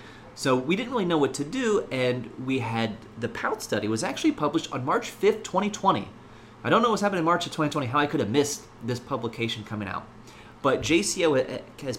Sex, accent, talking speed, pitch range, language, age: male, American, 210 wpm, 105-135 Hz, English, 30-49